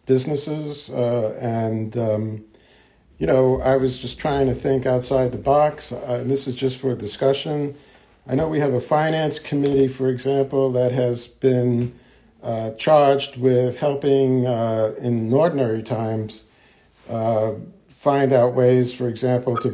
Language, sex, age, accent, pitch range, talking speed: English, male, 50-69, American, 115-135 Hz, 145 wpm